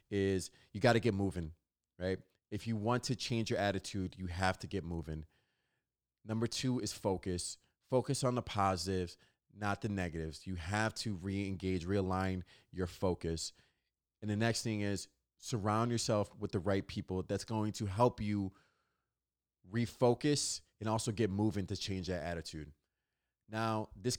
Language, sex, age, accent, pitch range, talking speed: English, male, 30-49, American, 95-115 Hz, 160 wpm